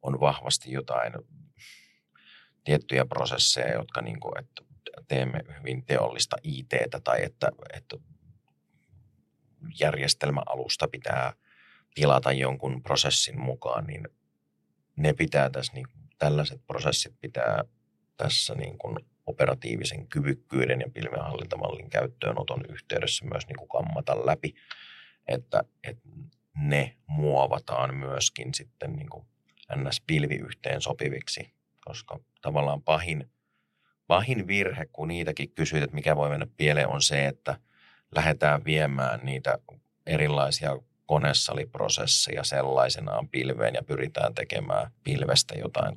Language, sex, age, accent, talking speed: Finnish, male, 30-49, native, 110 wpm